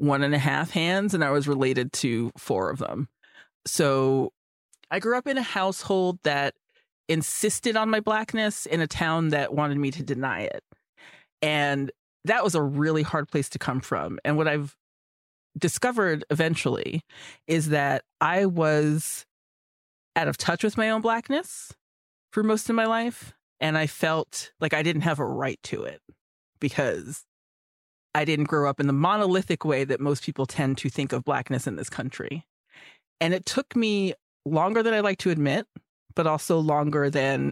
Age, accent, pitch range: 30-49, American, 140-180 Hz